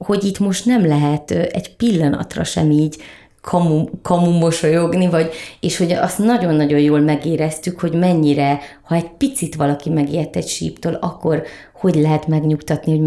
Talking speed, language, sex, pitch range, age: 145 wpm, Hungarian, female, 150-180 Hz, 30-49